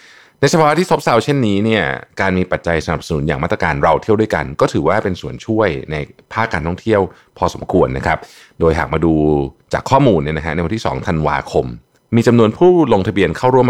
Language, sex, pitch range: Thai, male, 75-115 Hz